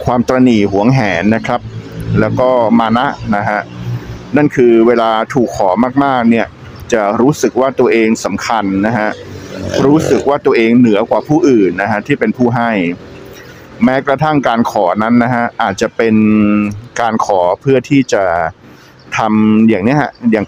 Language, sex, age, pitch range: Thai, male, 60-79, 105-125 Hz